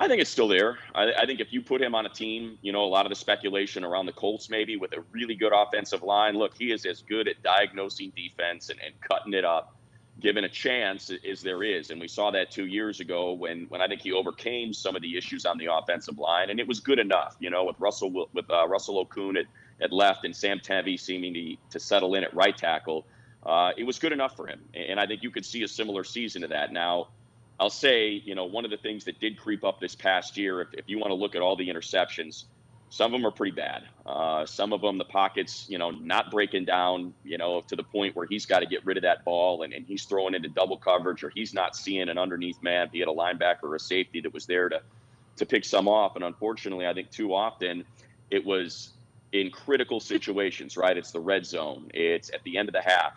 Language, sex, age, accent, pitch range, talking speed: English, male, 40-59, American, 90-110 Hz, 255 wpm